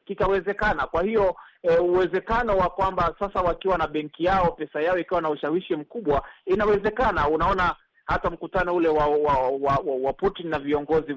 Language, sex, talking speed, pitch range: Swahili, male, 165 wpm, 150-190 Hz